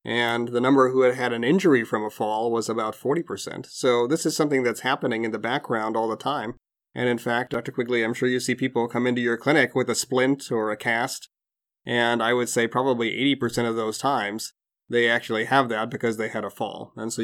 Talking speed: 230 wpm